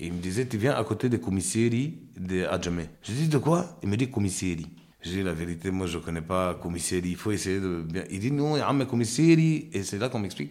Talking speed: 265 wpm